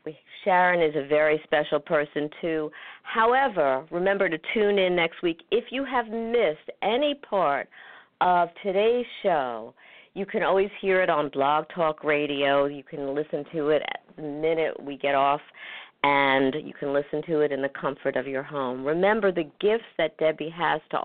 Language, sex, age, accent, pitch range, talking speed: English, female, 50-69, American, 135-170 Hz, 175 wpm